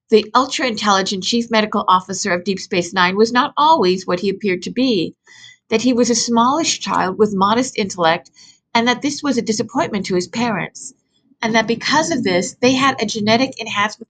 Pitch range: 205-250 Hz